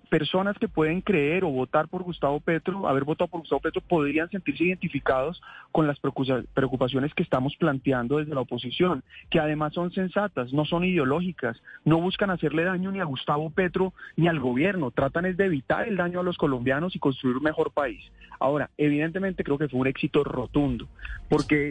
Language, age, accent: Spanish, 30-49, Colombian